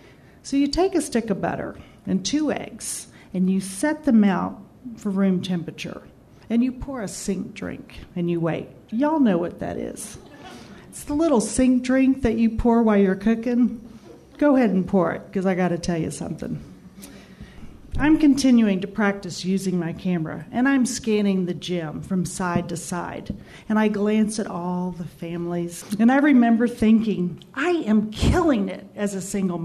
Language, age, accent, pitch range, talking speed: English, 40-59, American, 180-245 Hz, 180 wpm